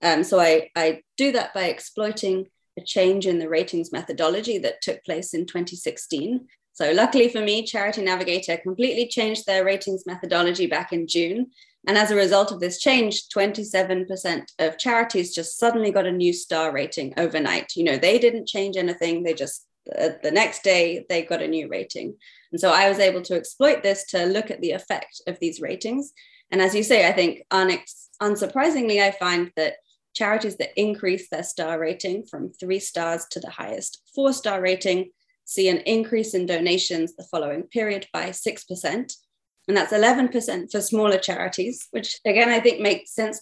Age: 20-39